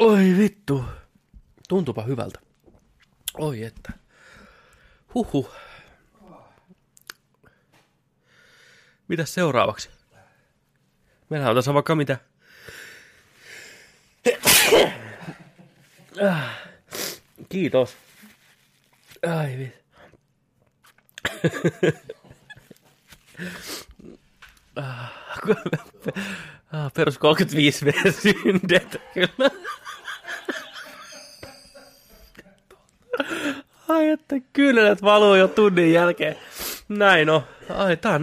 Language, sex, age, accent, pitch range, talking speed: Finnish, male, 30-49, native, 130-195 Hz, 50 wpm